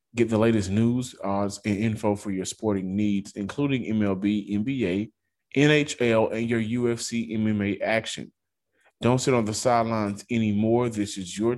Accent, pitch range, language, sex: American, 100-125 Hz, English, male